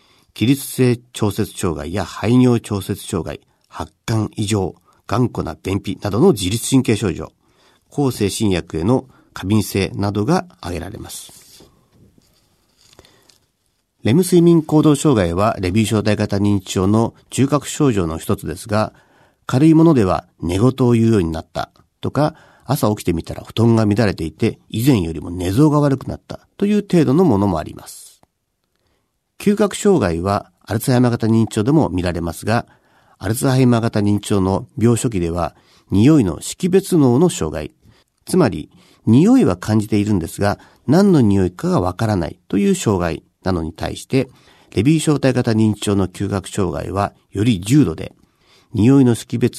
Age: 50-69